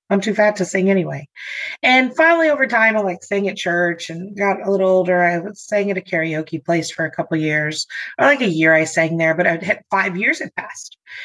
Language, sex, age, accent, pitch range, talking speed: English, female, 30-49, American, 180-260 Hz, 245 wpm